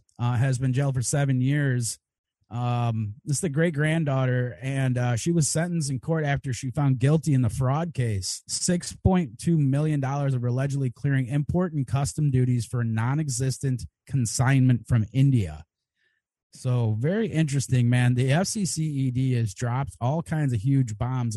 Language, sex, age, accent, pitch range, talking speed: English, male, 30-49, American, 120-140 Hz, 155 wpm